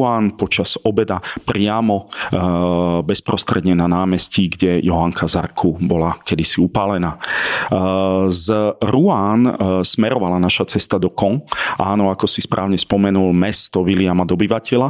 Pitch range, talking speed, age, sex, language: 90-100 Hz, 120 wpm, 40-59, male, Slovak